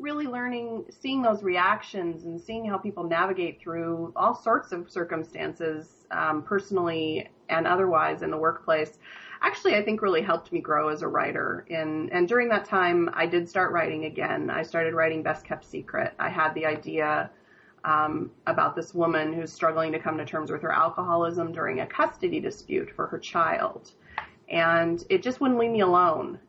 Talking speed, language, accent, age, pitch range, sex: 175 wpm, English, American, 30-49, 165-200 Hz, female